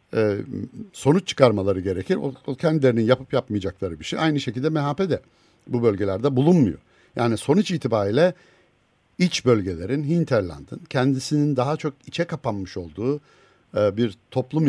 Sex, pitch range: male, 105-150 Hz